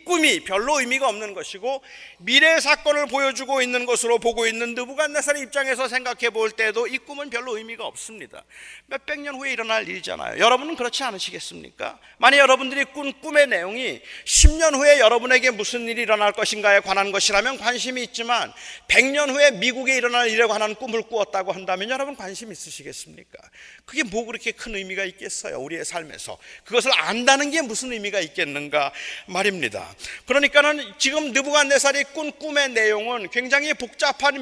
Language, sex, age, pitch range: Korean, male, 40-59, 225-285 Hz